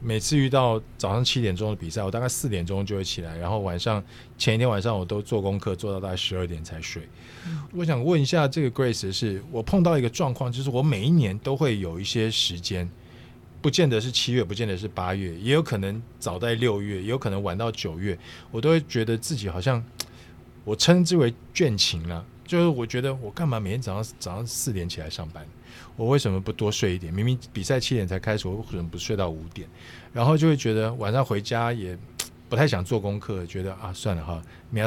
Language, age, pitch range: Chinese, 20-39, 95-125 Hz